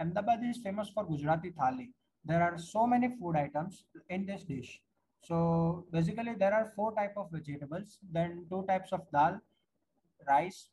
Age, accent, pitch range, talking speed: 20-39, Indian, 160-210 Hz, 160 wpm